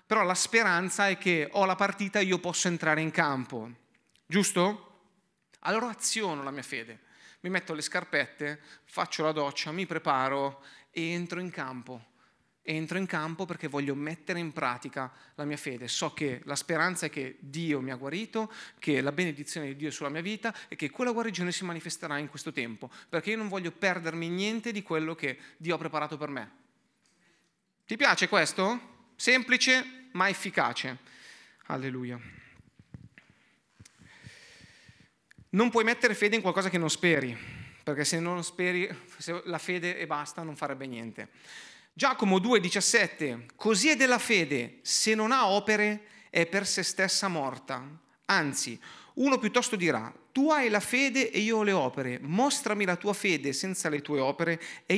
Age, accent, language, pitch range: 30-49, native, Italian, 145-205 Hz